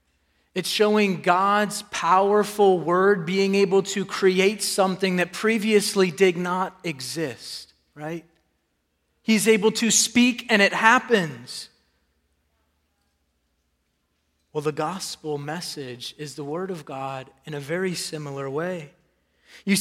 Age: 30-49